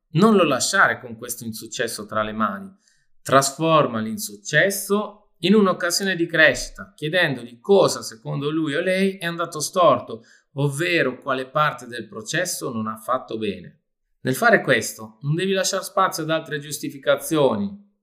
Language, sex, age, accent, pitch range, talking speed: Italian, male, 30-49, native, 125-180 Hz, 145 wpm